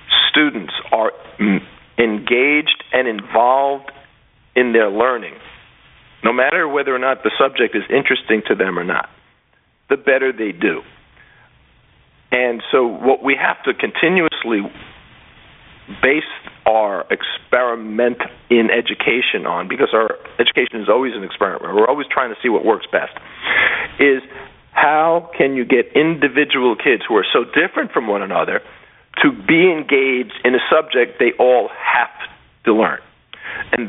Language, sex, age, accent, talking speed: English, male, 50-69, American, 140 wpm